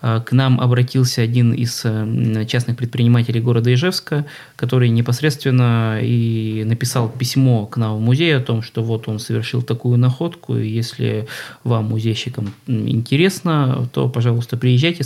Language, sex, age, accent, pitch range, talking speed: Russian, male, 20-39, native, 115-135 Hz, 135 wpm